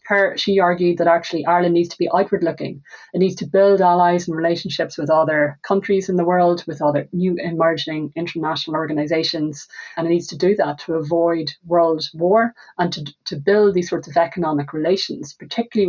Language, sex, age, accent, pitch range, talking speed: English, female, 30-49, Irish, 155-190 Hz, 185 wpm